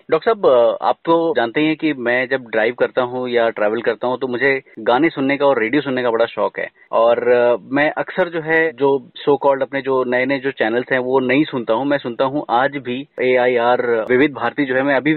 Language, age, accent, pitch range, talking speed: Hindi, 30-49, native, 125-160 Hz, 245 wpm